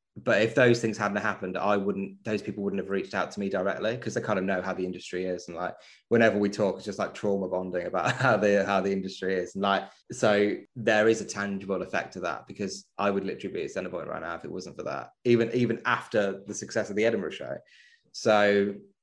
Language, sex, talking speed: English, male, 245 wpm